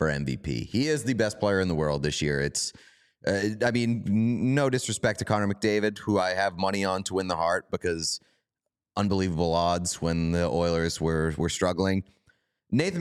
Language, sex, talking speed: English, male, 180 wpm